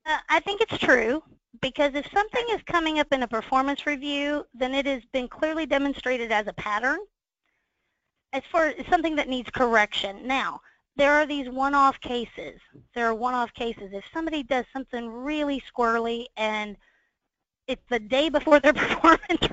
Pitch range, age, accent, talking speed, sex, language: 230-295 Hz, 30-49, American, 165 wpm, female, English